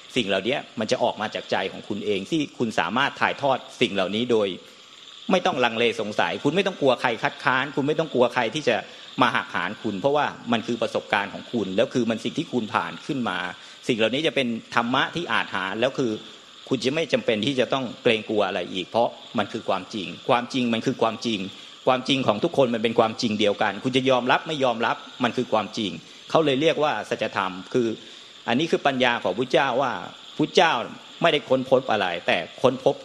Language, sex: Thai, male